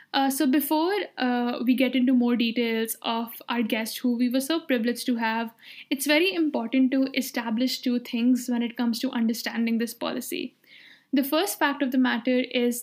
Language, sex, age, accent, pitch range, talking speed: English, female, 10-29, Indian, 235-270 Hz, 185 wpm